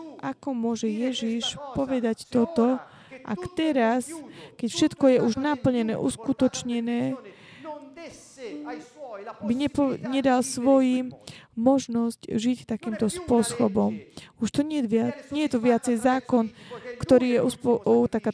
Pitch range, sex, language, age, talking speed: 230-265 Hz, female, Slovak, 20-39, 110 wpm